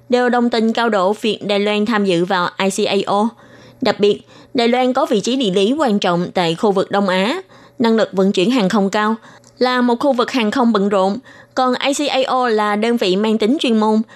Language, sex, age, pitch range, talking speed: Vietnamese, female, 20-39, 190-245 Hz, 220 wpm